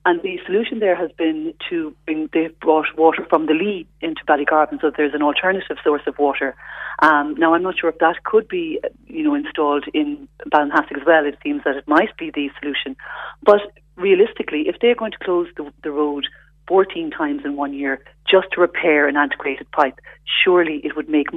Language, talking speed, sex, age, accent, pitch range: English, 210 wpm, female, 40-59, Irish, 150-210 Hz